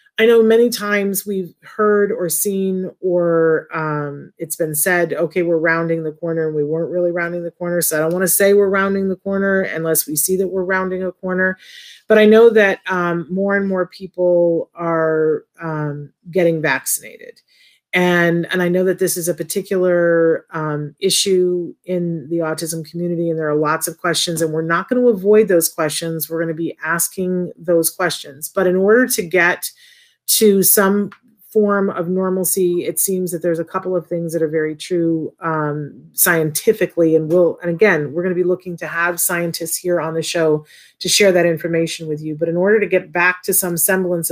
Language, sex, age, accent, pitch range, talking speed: English, female, 30-49, American, 160-190 Hz, 195 wpm